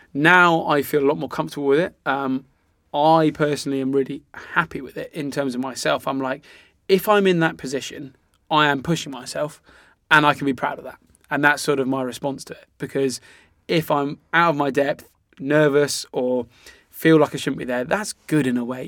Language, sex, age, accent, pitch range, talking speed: English, male, 20-39, British, 135-155 Hz, 215 wpm